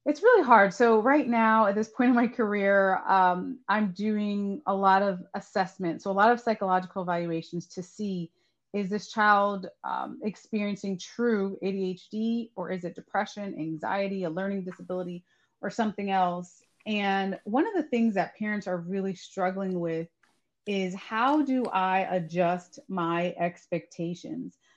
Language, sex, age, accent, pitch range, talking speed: English, female, 30-49, American, 180-225 Hz, 155 wpm